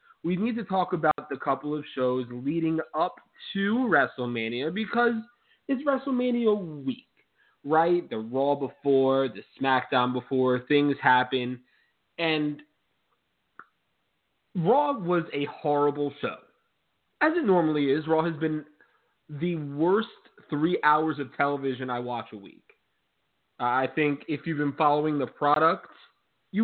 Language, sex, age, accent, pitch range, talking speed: English, male, 30-49, American, 130-170 Hz, 135 wpm